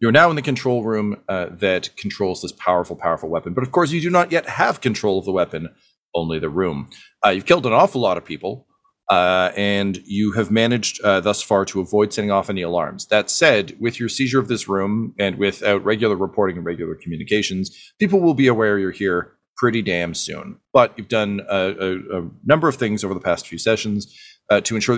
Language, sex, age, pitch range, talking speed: English, male, 40-59, 95-120 Hz, 220 wpm